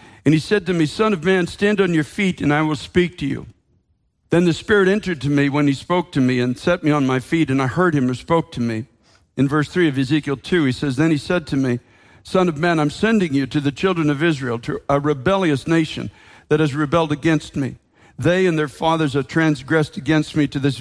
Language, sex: English, male